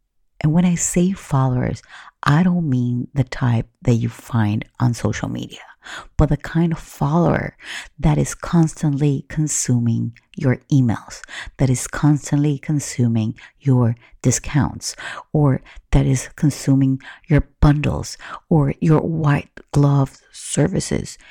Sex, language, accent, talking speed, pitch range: female, English, American, 125 wpm, 115-150 Hz